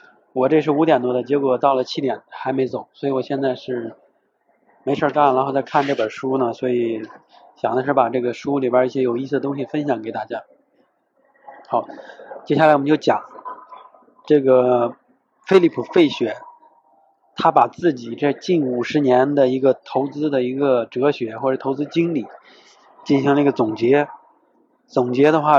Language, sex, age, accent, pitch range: Chinese, male, 20-39, native, 130-160 Hz